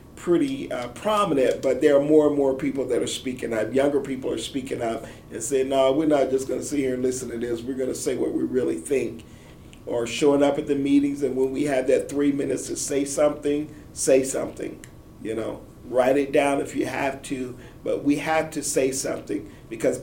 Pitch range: 135-160 Hz